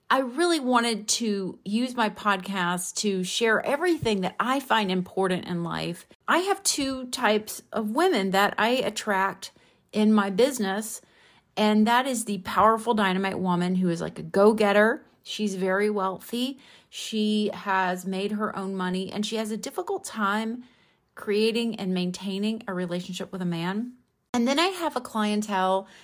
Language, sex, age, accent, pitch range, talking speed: English, female, 30-49, American, 185-235 Hz, 160 wpm